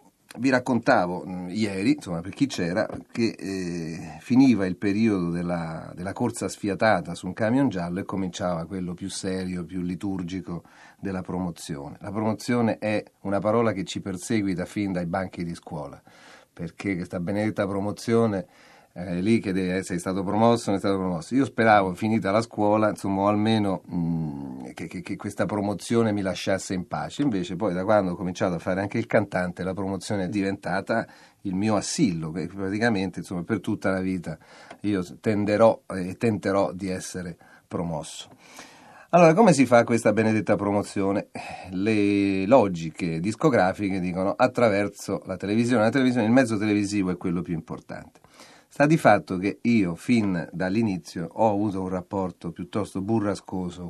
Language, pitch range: Italian, 90-105 Hz